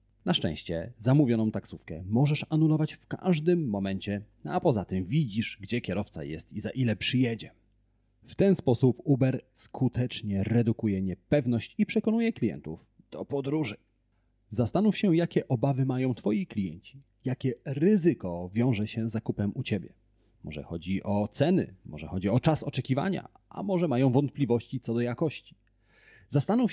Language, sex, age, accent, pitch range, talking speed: Polish, male, 30-49, native, 105-140 Hz, 145 wpm